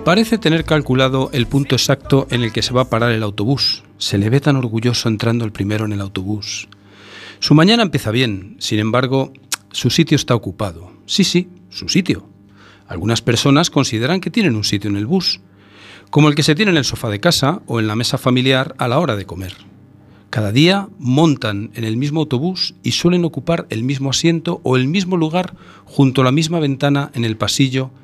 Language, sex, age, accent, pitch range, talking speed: Spanish, male, 40-59, Spanish, 110-150 Hz, 205 wpm